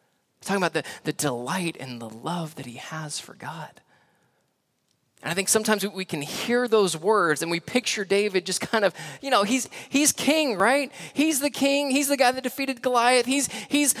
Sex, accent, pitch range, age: male, American, 150-245 Hz, 20-39